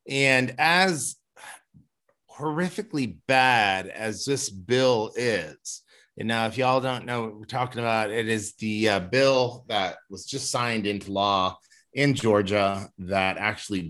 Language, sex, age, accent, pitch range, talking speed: English, male, 30-49, American, 110-140 Hz, 145 wpm